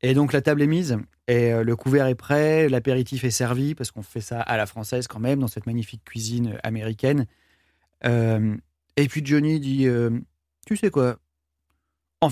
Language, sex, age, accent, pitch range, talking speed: French, male, 30-49, French, 120-150 Hz, 195 wpm